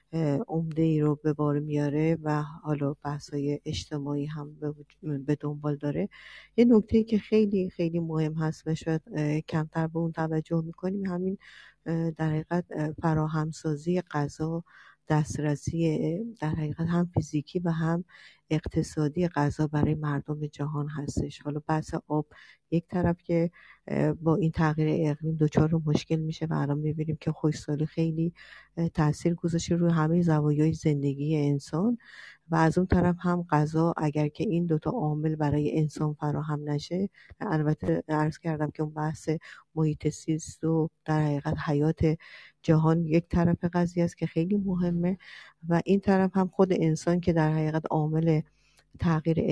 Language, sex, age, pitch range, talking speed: Persian, female, 50-69, 150-170 Hz, 145 wpm